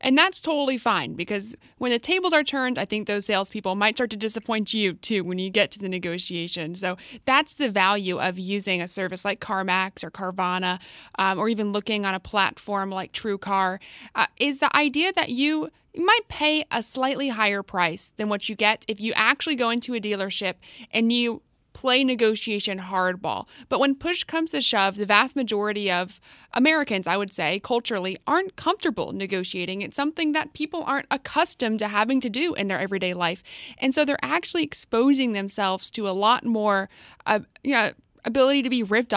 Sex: female